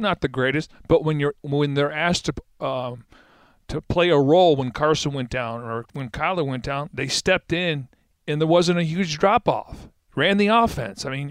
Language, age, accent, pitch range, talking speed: English, 40-59, American, 130-170 Hz, 205 wpm